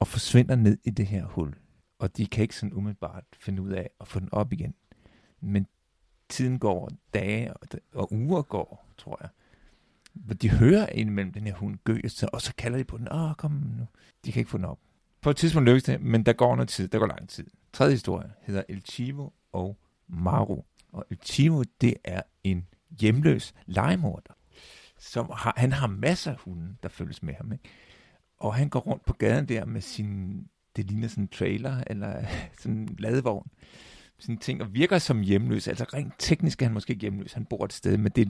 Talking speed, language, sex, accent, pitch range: 210 wpm, Danish, male, native, 100-125 Hz